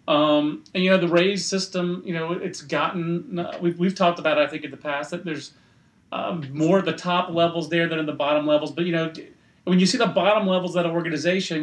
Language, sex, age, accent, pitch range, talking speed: English, male, 30-49, American, 140-175 Hz, 250 wpm